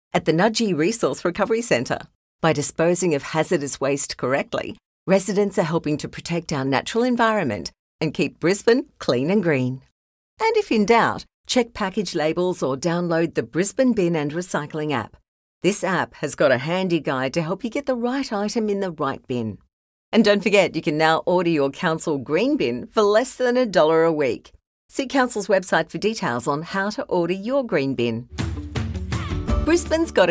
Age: 50-69